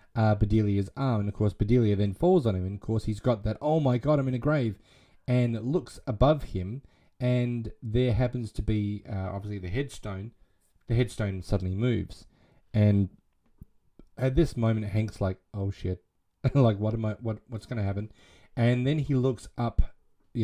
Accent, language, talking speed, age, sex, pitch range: Australian, English, 190 wpm, 30-49, male, 105-130 Hz